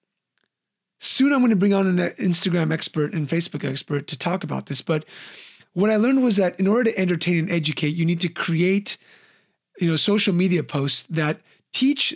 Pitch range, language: 160-210 Hz, English